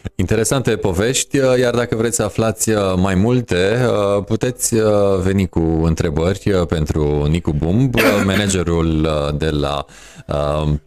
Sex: male